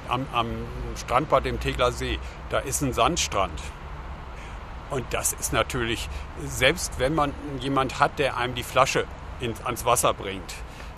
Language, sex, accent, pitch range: German, male, German, 105-135 Hz